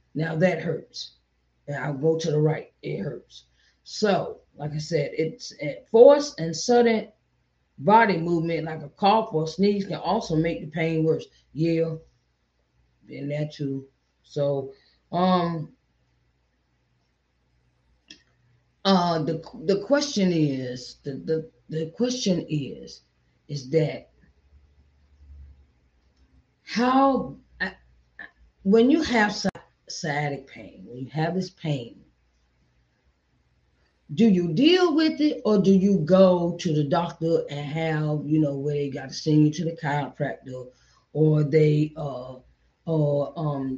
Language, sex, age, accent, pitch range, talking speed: English, female, 30-49, American, 130-180 Hz, 130 wpm